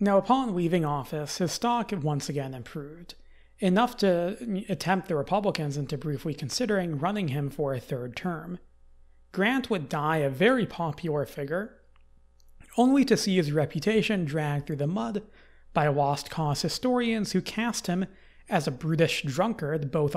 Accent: American